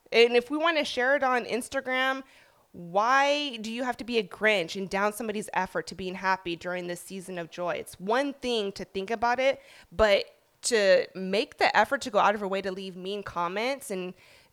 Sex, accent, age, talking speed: female, American, 20-39, 215 wpm